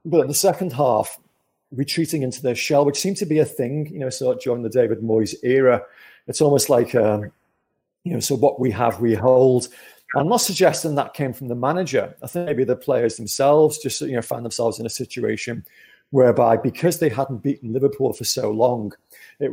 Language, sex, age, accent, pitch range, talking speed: English, male, 40-59, British, 120-155 Hz, 205 wpm